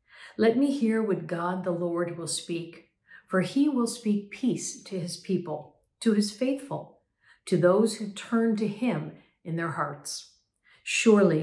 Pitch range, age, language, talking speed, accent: 165-205 Hz, 50-69, English, 160 wpm, American